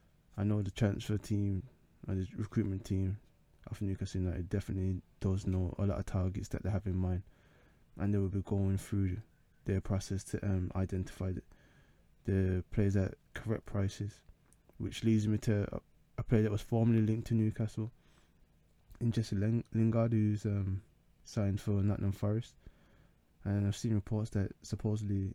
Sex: male